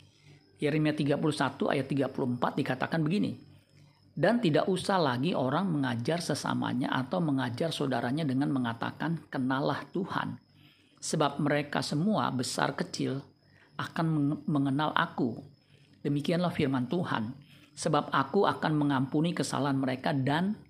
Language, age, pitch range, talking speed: Indonesian, 50-69, 135-155 Hz, 110 wpm